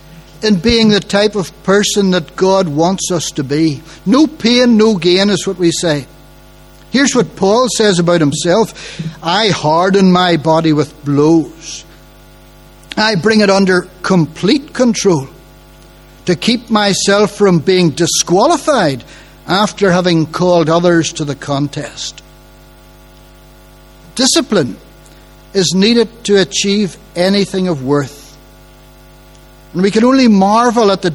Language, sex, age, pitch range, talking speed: English, male, 60-79, 165-215 Hz, 125 wpm